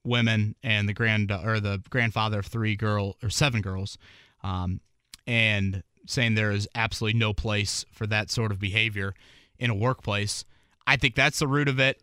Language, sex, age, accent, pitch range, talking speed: English, male, 20-39, American, 110-145 Hz, 180 wpm